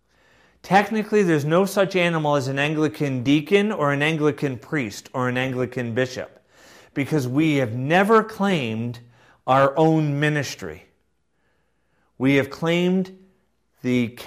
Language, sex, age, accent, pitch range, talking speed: English, male, 40-59, American, 120-175 Hz, 120 wpm